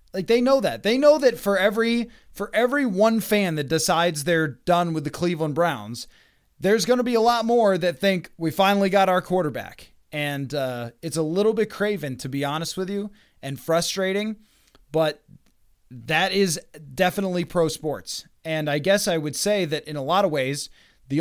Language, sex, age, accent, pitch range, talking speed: English, male, 20-39, American, 155-210 Hz, 190 wpm